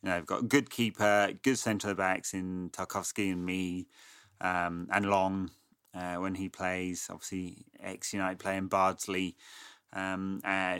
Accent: British